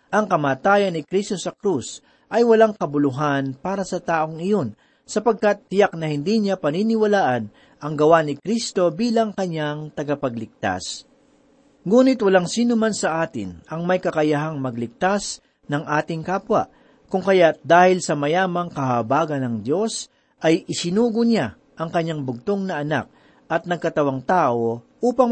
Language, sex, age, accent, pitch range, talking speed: Filipino, male, 40-59, native, 145-200 Hz, 135 wpm